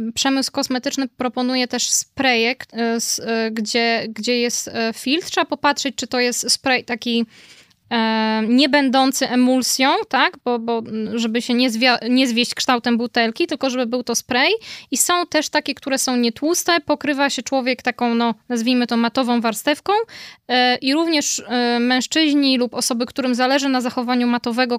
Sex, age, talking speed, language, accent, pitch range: female, 10-29, 145 wpm, Polish, native, 245-285 Hz